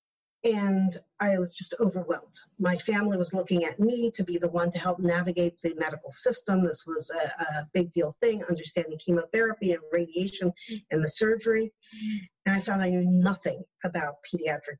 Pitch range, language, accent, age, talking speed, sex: 165-190 Hz, English, American, 50-69, 175 wpm, female